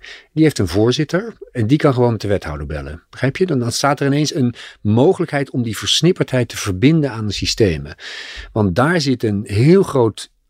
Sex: male